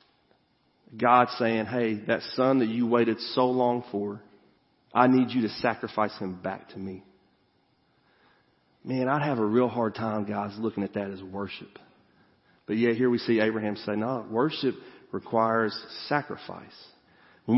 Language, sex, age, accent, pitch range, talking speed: English, male, 40-59, American, 120-165 Hz, 155 wpm